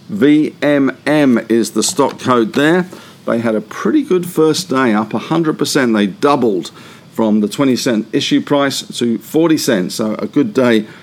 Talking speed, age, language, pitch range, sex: 150 wpm, 50-69, English, 110-150 Hz, male